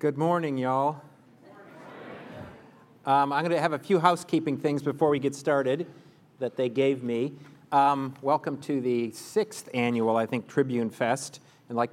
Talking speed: 155 wpm